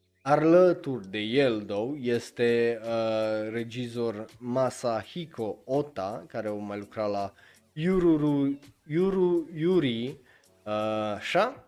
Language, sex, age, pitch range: Romanian, male, 20-39, 110-140 Hz